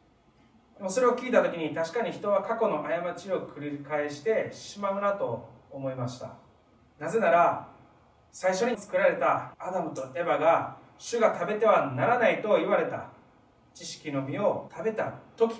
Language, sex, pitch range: Japanese, male, 135-190 Hz